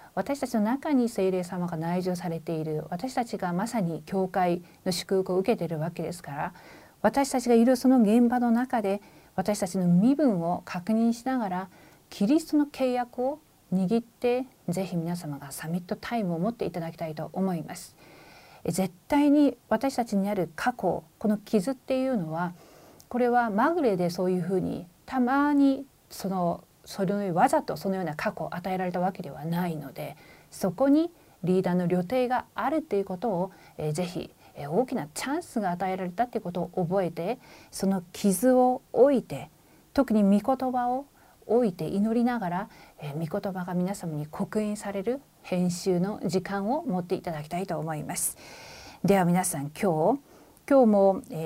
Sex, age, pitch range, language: female, 40-59, 175-240 Hz, Korean